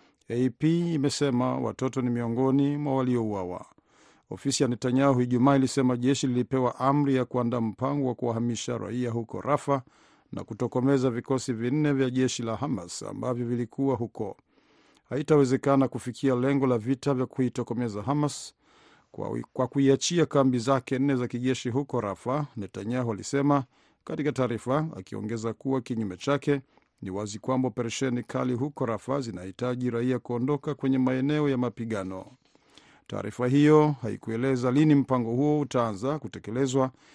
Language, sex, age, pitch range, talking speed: Swahili, male, 50-69, 120-140 Hz, 130 wpm